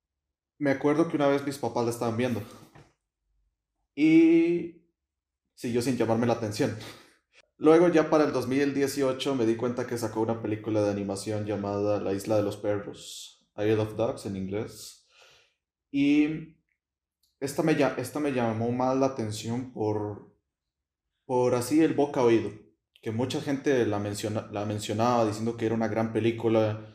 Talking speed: 155 wpm